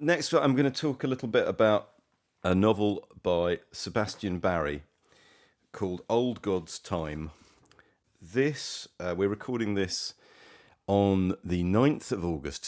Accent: British